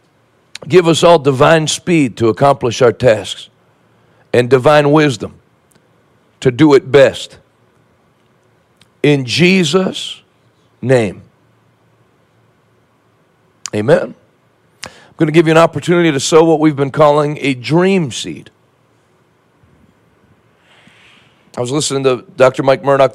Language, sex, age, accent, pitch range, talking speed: English, male, 50-69, American, 125-150 Hz, 110 wpm